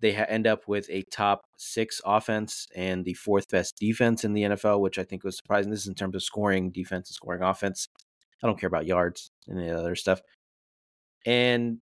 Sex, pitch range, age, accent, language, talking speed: male, 95-115 Hz, 30-49, American, English, 205 wpm